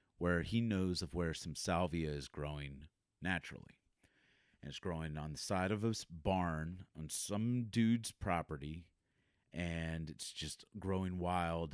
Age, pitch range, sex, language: 40-59, 80-100 Hz, male, English